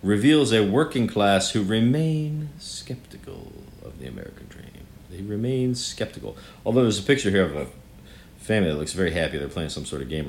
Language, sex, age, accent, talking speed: English, male, 40-59, American, 185 wpm